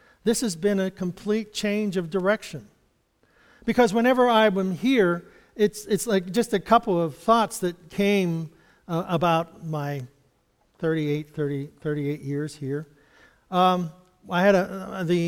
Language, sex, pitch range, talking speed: English, male, 160-200 Hz, 140 wpm